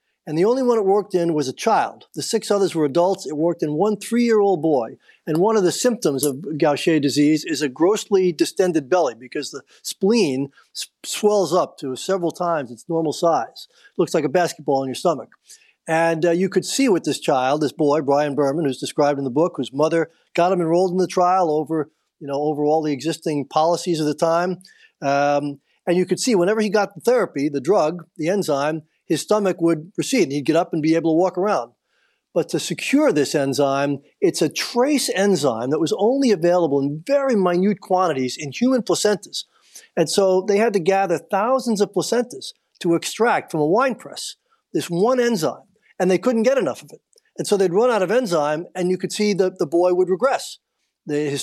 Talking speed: 210 wpm